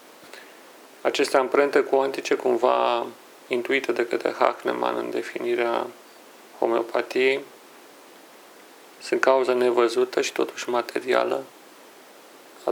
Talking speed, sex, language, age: 90 wpm, male, Romanian, 40-59